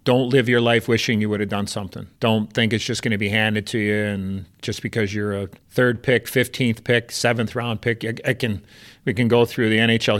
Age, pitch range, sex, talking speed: 40-59, 100-120 Hz, male, 235 wpm